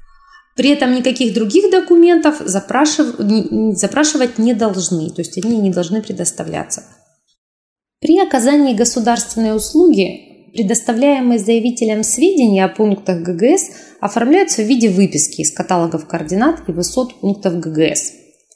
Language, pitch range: Russian, 195-280 Hz